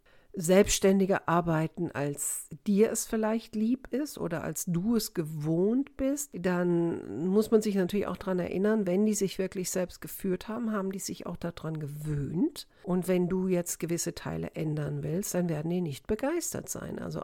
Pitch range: 165-210 Hz